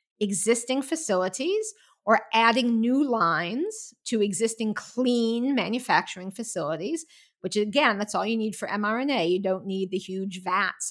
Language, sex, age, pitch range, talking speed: English, female, 50-69, 190-250 Hz, 140 wpm